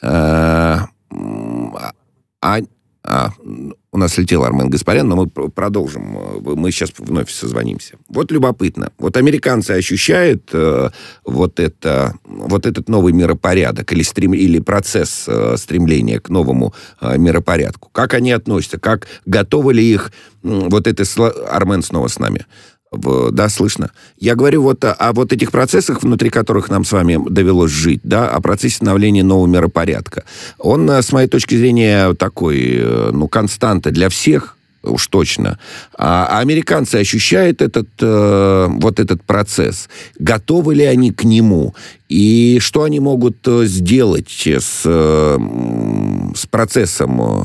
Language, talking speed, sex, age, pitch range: Russian, 130 wpm, male, 50-69, 85-115 Hz